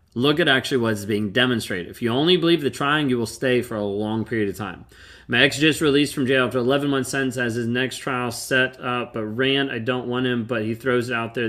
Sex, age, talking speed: male, 30-49, 250 wpm